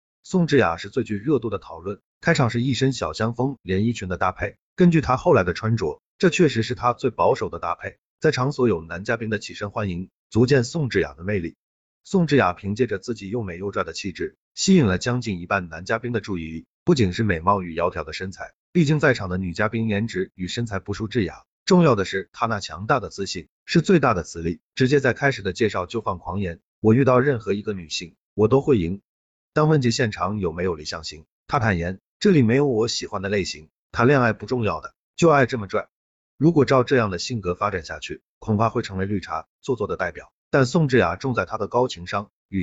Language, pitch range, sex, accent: Chinese, 95-130 Hz, male, native